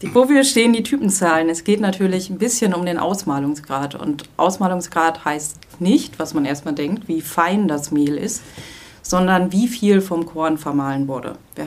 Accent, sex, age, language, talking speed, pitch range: German, female, 30-49, German, 170 wpm, 150-185 Hz